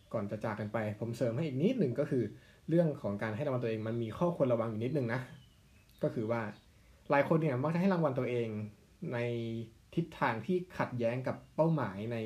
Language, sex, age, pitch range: Thai, male, 20-39, 110-145 Hz